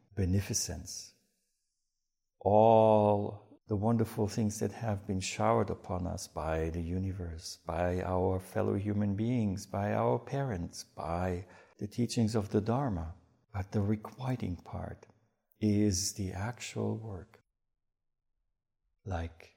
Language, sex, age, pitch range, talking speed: English, male, 60-79, 90-110 Hz, 115 wpm